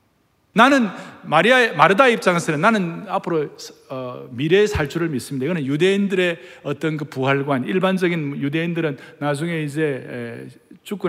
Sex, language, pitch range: male, Korean, 145-220 Hz